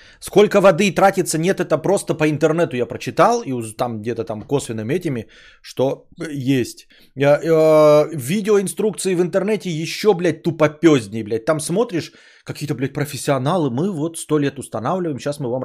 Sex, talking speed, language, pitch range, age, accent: male, 145 wpm, Russian, 120-170 Hz, 20-39, native